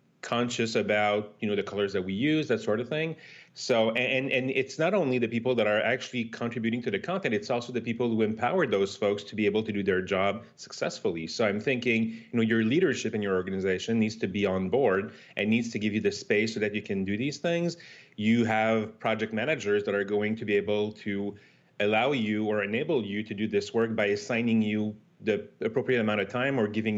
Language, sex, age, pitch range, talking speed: English, male, 30-49, 105-125 Hz, 230 wpm